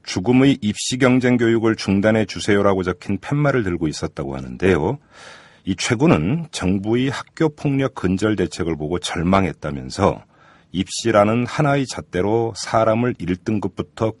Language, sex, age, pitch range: Korean, male, 40-59, 90-120 Hz